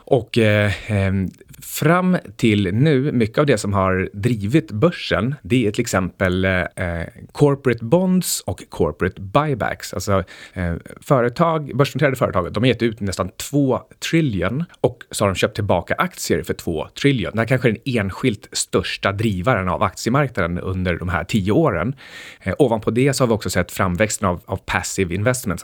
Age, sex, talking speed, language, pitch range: 30-49, male, 170 wpm, Swedish, 95-125 Hz